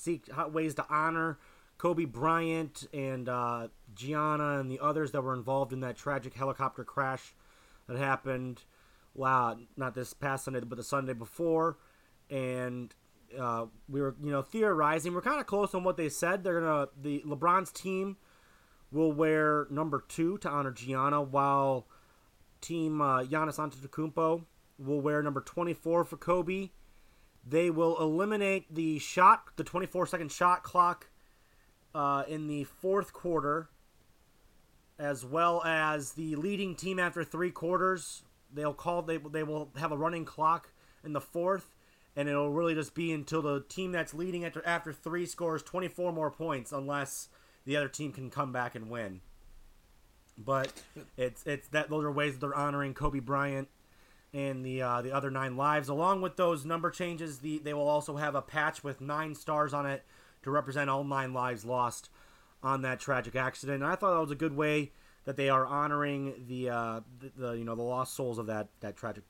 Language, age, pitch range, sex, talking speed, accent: English, 30-49, 130-165 Hz, male, 175 wpm, American